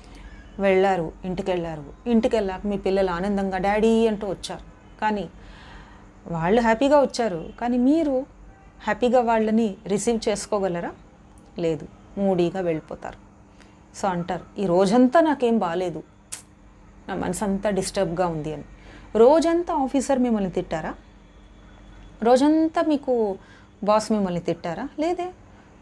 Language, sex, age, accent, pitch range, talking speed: Telugu, female, 30-49, native, 165-235 Hz, 105 wpm